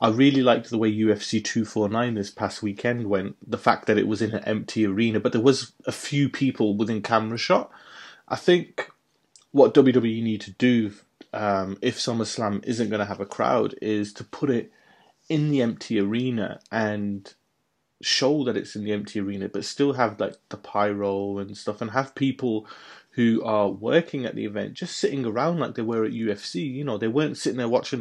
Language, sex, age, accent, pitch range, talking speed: English, male, 30-49, British, 105-130 Hz, 205 wpm